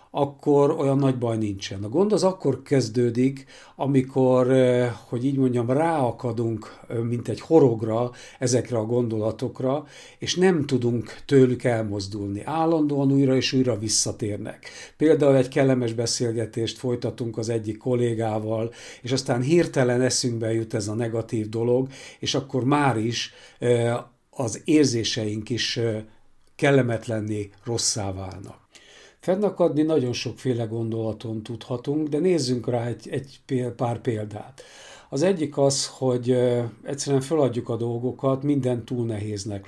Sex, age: male, 60-79